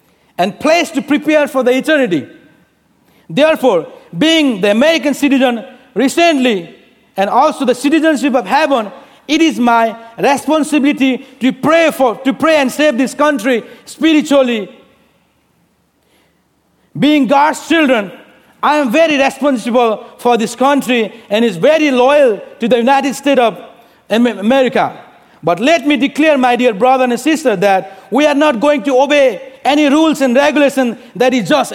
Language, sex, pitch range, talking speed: English, male, 250-310 Hz, 145 wpm